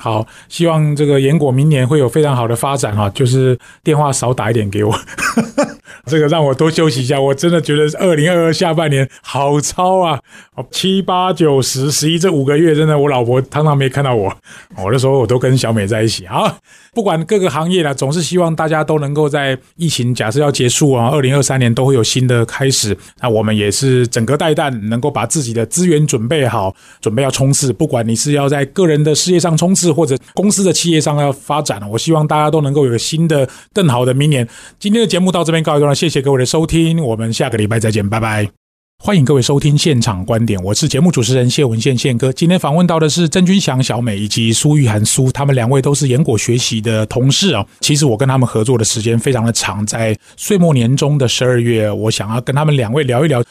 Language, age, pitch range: Chinese, 20-39, 115-155 Hz